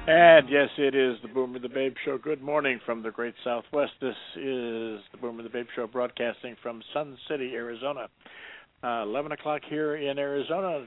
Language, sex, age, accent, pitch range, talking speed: English, male, 60-79, American, 115-135 Hz, 180 wpm